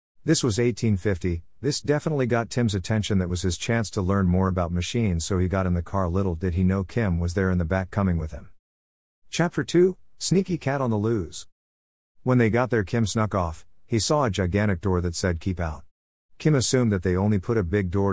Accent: American